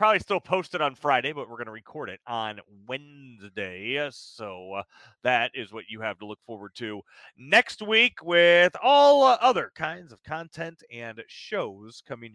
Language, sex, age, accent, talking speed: English, male, 30-49, American, 175 wpm